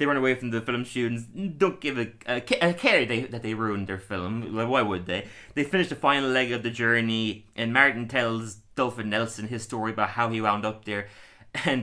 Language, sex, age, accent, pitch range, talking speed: English, male, 20-39, Irish, 110-140 Hz, 225 wpm